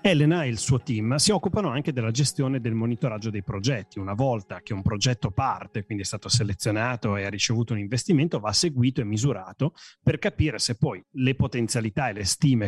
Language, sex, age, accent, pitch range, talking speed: Italian, male, 30-49, native, 110-140 Hz, 205 wpm